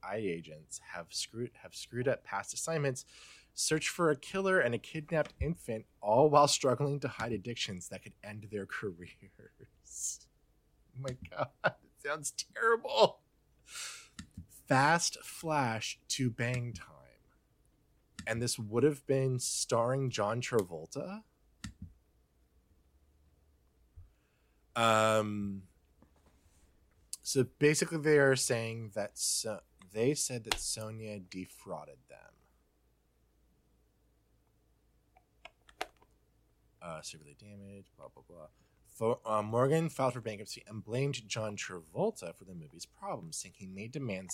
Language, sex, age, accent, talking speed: English, male, 20-39, American, 115 wpm